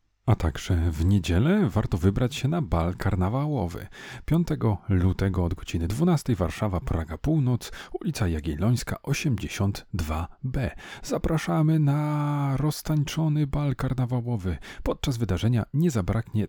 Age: 40-59